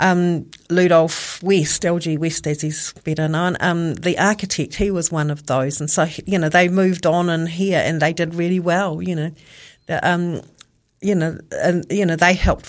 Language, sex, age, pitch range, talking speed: English, female, 40-59, 160-180 Hz, 195 wpm